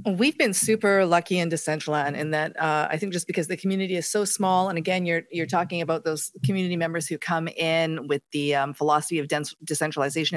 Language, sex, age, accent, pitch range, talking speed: English, female, 40-59, American, 160-195 Hz, 215 wpm